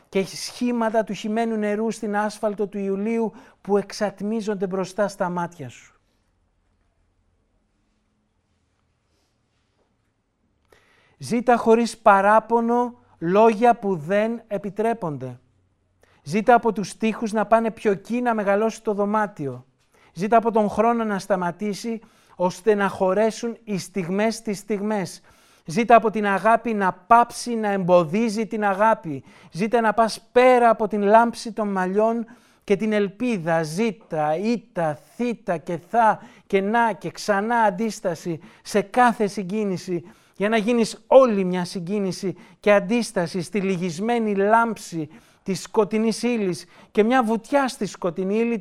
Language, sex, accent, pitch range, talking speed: Greek, male, native, 185-230 Hz, 125 wpm